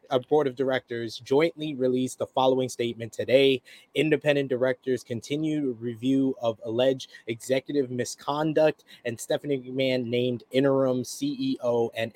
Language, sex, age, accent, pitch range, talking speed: English, male, 20-39, American, 120-140 Hz, 125 wpm